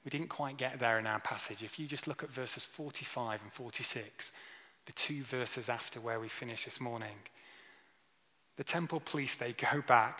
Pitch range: 120-140 Hz